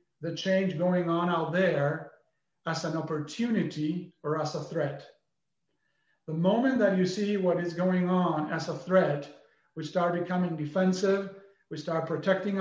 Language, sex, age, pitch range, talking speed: English, male, 40-59, 160-190 Hz, 150 wpm